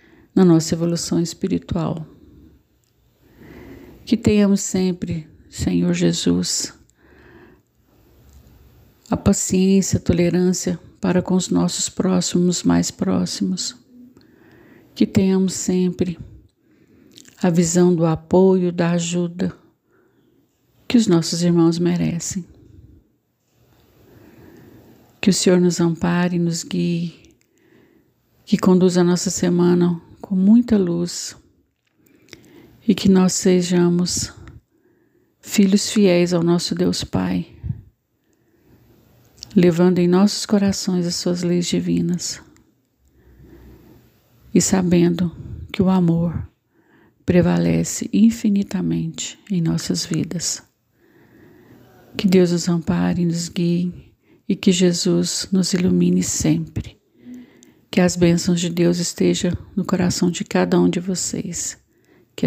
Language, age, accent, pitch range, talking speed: Portuguese, 50-69, Brazilian, 165-190 Hz, 100 wpm